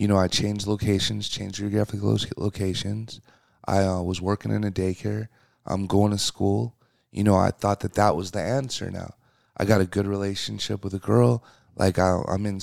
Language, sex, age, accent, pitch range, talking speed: English, male, 30-49, American, 95-115 Hz, 190 wpm